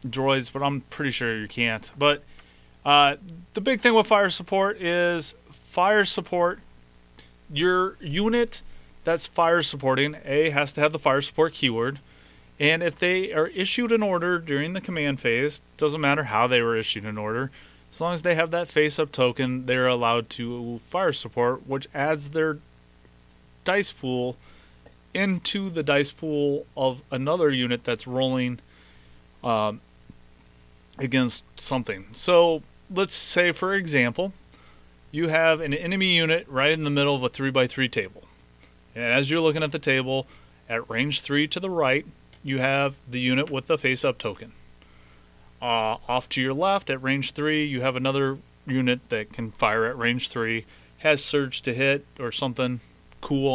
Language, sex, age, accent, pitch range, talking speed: English, male, 30-49, American, 115-155 Hz, 165 wpm